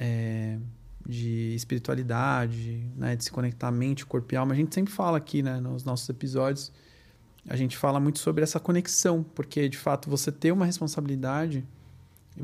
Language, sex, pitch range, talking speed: Portuguese, male, 130-165 Hz, 170 wpm